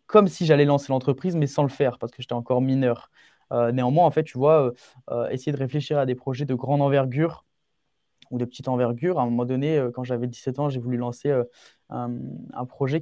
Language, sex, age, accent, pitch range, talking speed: French, male, 20-39, French, 125-155 Hz, 235 wpm